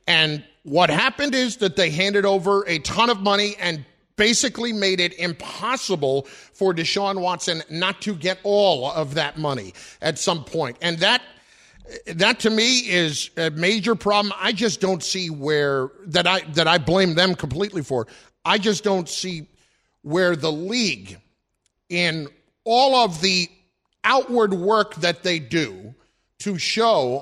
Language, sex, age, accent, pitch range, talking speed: English, male, 50-69, American, 165-210 Hz, 155 wpm